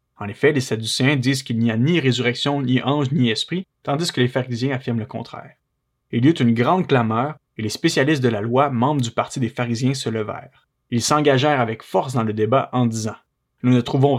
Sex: male